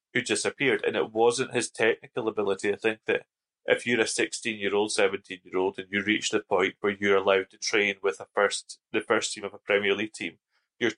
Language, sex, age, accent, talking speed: English, male, 30-49, British, 220 wpm